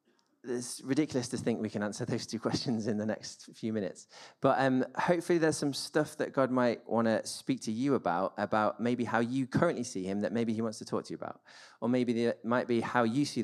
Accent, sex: British, male